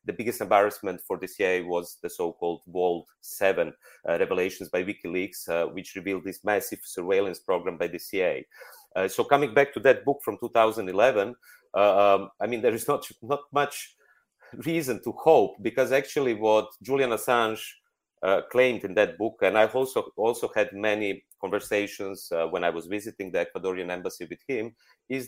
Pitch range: 95-125 Hz